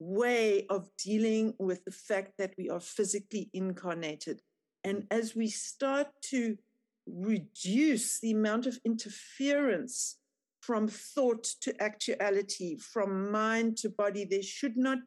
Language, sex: English, female